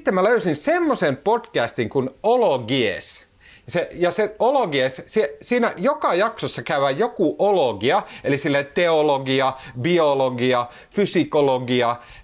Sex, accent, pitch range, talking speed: male, native, 130-190 Hz, 115 wpm